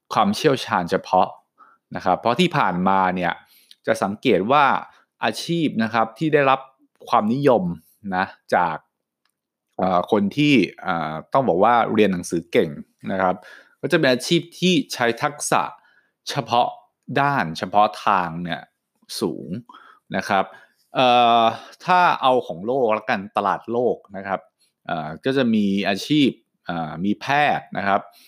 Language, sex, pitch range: English, male, 100-150 Hz